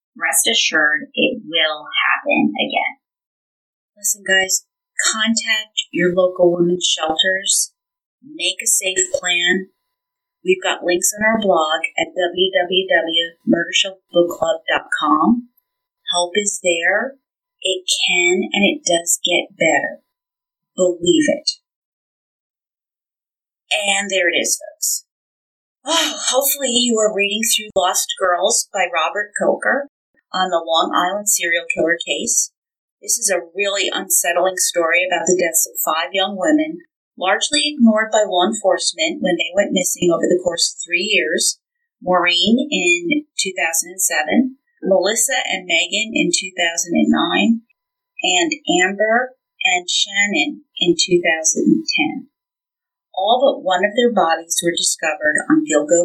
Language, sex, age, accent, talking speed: English, female, 30-49, American, 120 wpm